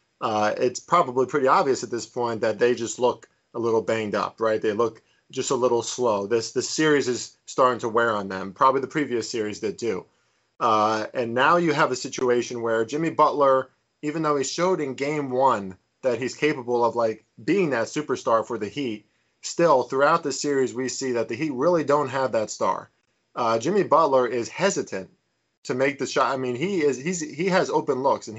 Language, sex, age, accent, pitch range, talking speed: English, male, 20-39, American, 115-140 Hz, 210 wpm